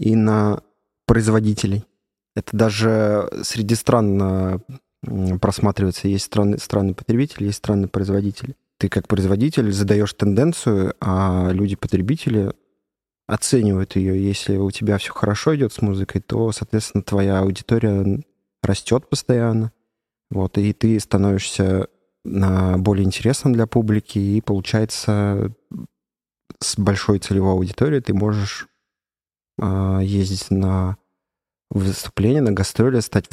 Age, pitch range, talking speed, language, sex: 20-39, 95-110 Hz, 105 wpm, Russian, male